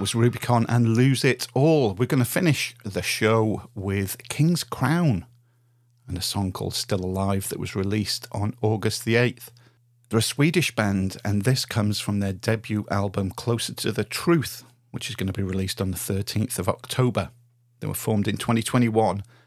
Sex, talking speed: male, 180 wpm